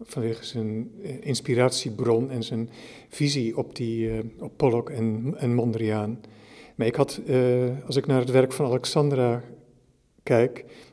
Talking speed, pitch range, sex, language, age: 145 wpm, 125-150 Hz, male, Dutch, 50-69